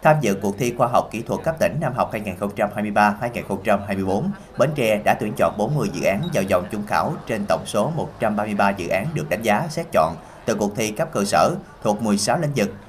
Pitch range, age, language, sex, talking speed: 100-125 Hz, 20-39, Vietnamese, male, 215 wpm